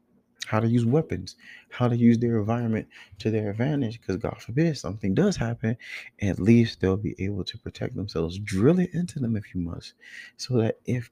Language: English